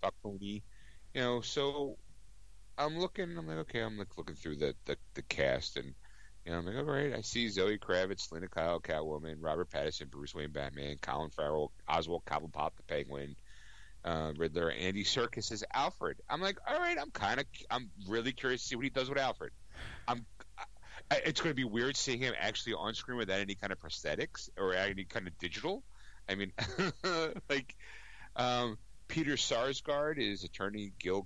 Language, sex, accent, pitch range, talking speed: English, male, American, 90-140 Hz, 185 wpm